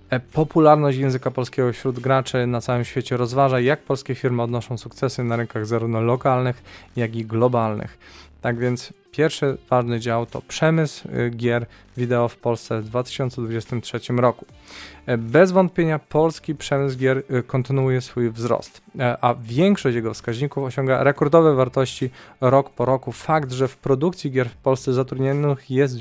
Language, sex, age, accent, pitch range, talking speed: Polish, male, 20-39, native, 125-145 Hz, 145 wpm